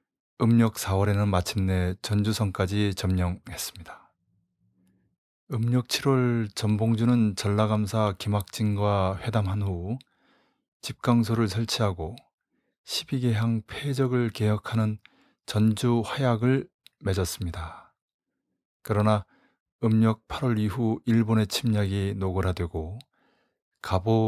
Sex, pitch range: male, 100-115 Hz